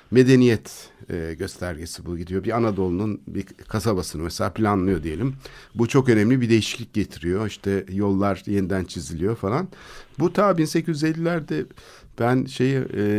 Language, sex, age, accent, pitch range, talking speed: Turkish, male, 60-79, native, 95-130 Hz, 125 wpm